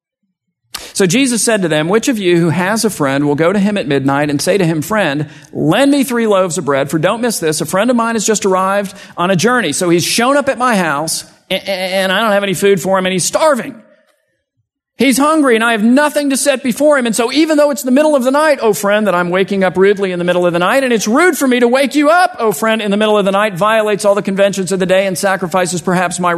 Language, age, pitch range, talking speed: English, 40-59, 155-235 Hz, 280 wpm